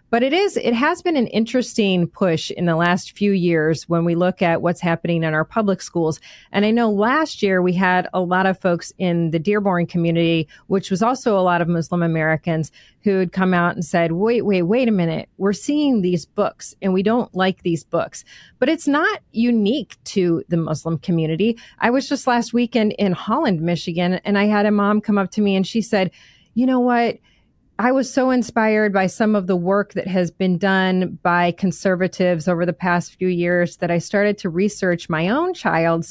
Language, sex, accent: English, female, American